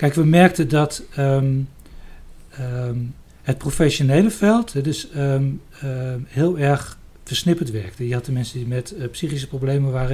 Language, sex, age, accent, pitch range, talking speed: Dutch, male, 60-79, Dutch, 125-145 Hz, 130 wpm